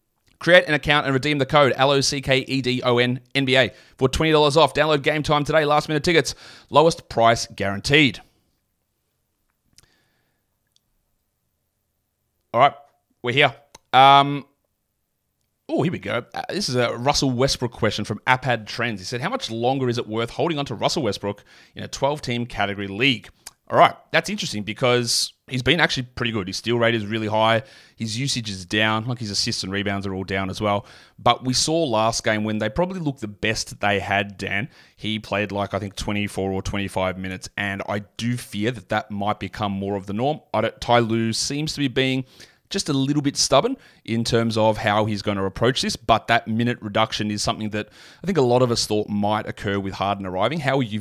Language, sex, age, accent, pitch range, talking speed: English, male, 30-49, Australian, 105-135 Hz, 195 wpm